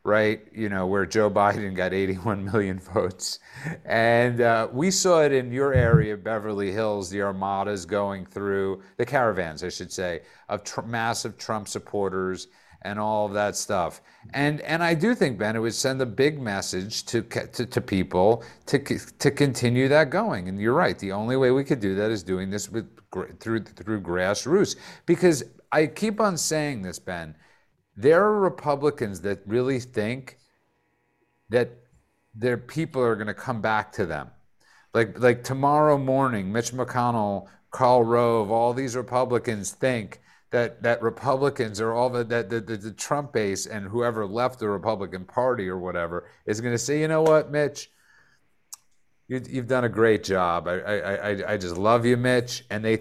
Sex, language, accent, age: male, English, American, 50-69